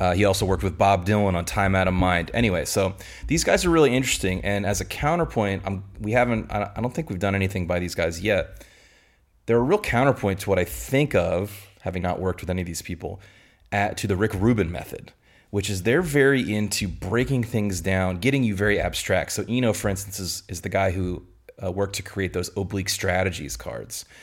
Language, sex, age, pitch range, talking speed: English, male, 30-49, 90-105 Hz, 220 wpm